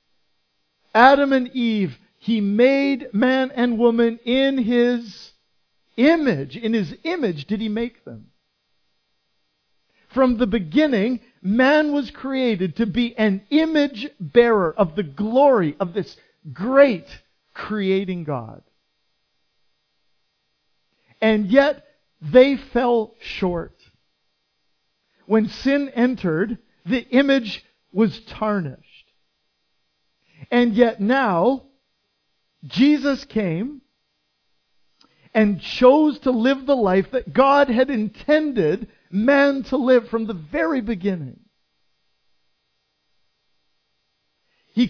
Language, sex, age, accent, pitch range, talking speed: English, male, 50-69, American, 185-260 Hz, 95 wpm